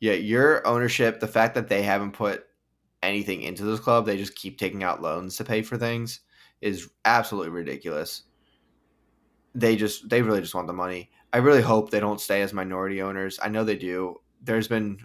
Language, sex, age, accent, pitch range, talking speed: English, male, 10-29, American, 100-120 Hz, 185 wpm